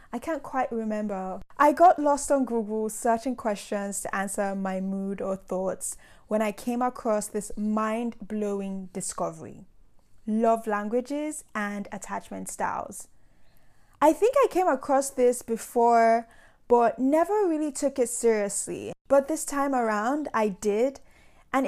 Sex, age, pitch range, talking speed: female, 10-29, 210-260 Hz, 140 wpm